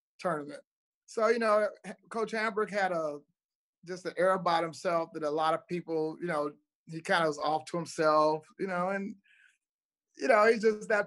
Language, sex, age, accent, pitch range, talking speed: English, male, 30-49, American, 175-225 Hz, 190 wpm